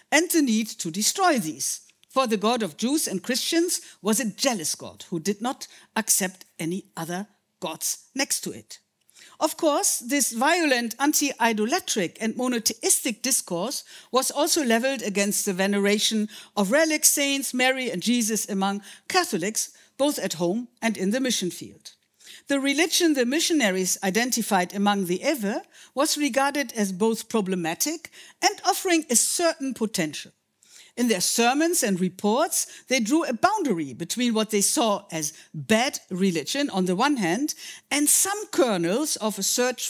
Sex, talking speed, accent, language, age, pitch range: female, 155 wpm, German, Dutch, 60-79, 200-285 Hz